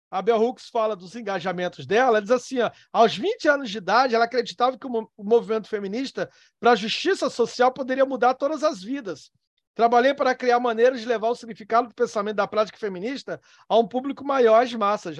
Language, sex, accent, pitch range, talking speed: Portuguese, male, Brazilian, 220-280 Hz, 195 wpm